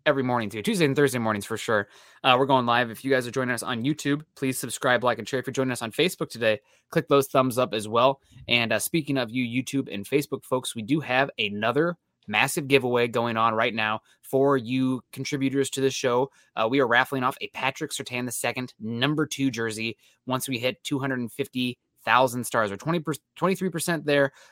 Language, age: English, 20-39